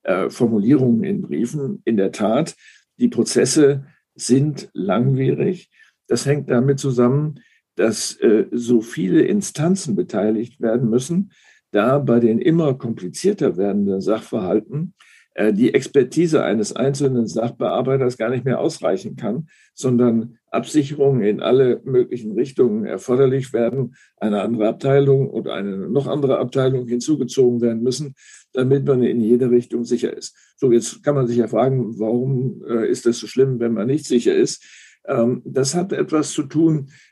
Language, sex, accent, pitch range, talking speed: German, male, German, 120-140 Hz, 140 wpm